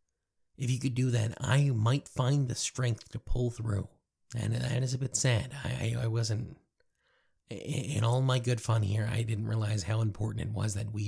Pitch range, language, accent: 105-125 Hz, English, American